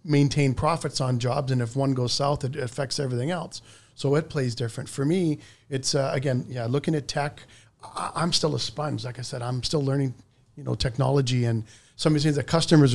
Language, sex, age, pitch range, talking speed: English, male, 40-59, 125-150 Hz, 215 wpm